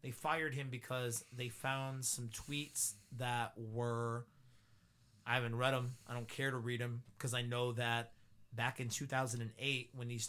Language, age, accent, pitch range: English, 30-49, American, 120-135 Hz